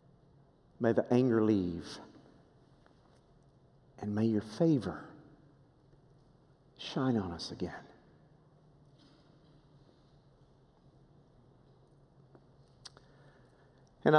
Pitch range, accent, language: 135-220 Hz, American, English